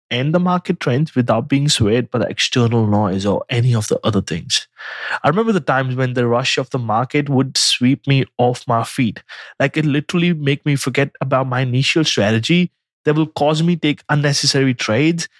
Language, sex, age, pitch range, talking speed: English, male, 20-39, 125-160 Hz, 200 wpm